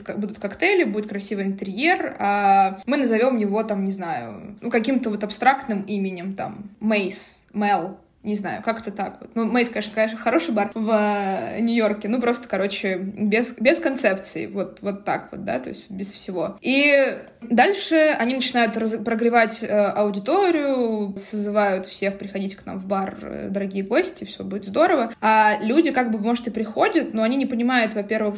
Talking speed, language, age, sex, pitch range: 170 wpm, Russian, 20-39, female, 200-230 Hz